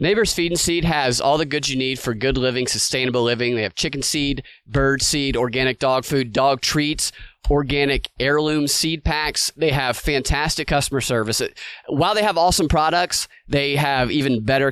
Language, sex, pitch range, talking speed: English, male, 130-160 Hz, 180 wpm